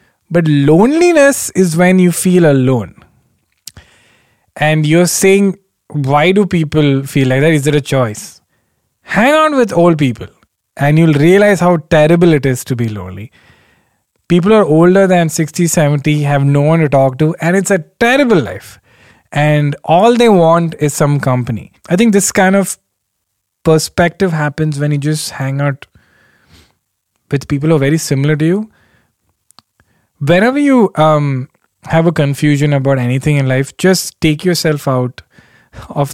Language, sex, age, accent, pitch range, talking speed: English, male, 20-39, Indian, 135-175 Hz, 155 wpm